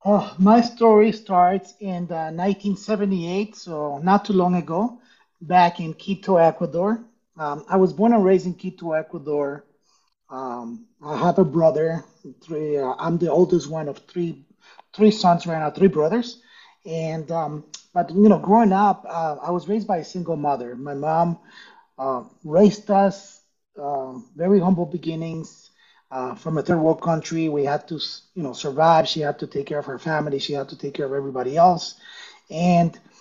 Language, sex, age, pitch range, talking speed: English, male, 30-49, 150-190 Hz, 175 wpm